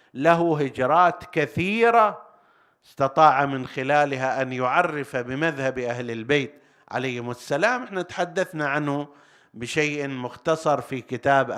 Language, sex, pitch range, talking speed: Arabic, male, 125-155 Hz, 105 wpm